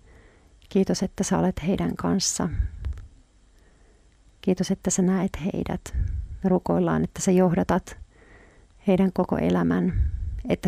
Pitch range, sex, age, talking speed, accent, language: 165-195 Hz, female, 40-59, 105 wpm, native, Finnish